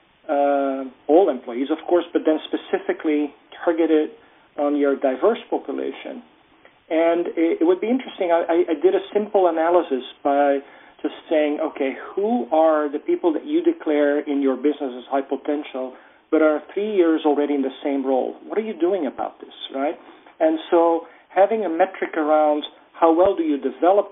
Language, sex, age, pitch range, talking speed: English, male, 40-59, 145-185 Hz, 170 wpm